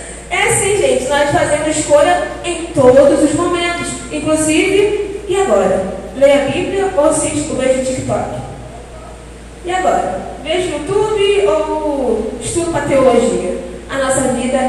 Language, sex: Portuguese, female